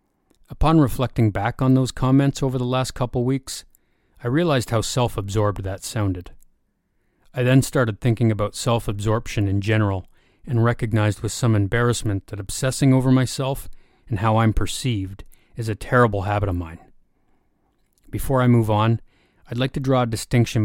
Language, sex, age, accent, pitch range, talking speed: English, male, 30-49, American, 100-120 Hz, 155 wpm